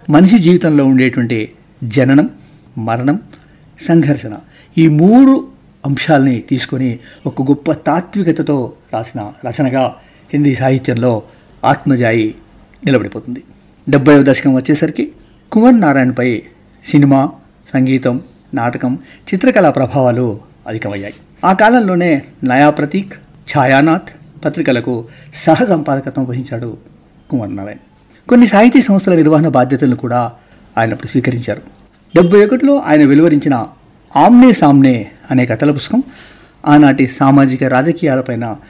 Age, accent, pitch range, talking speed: 50-69, native, 125-160 Hz, 90 wpm